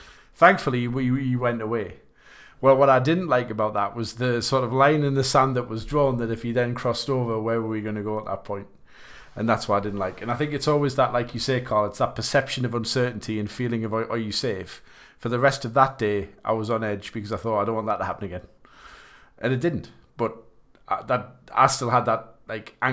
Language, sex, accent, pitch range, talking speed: English, male, British, 110-135 Hz, 250 wpm